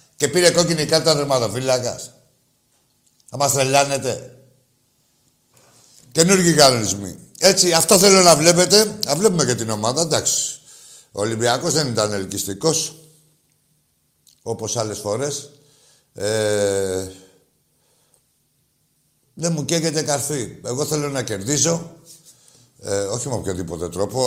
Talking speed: 105 wpm